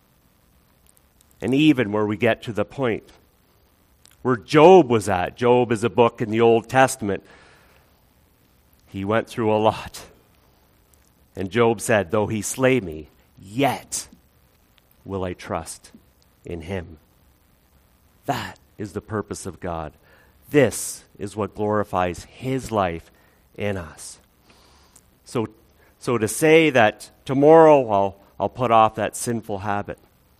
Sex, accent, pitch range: male, American, 85-125 Hz